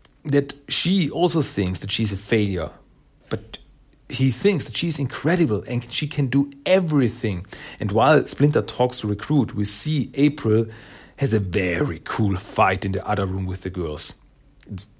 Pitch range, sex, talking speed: 105-145 Hz, male, 165 wpm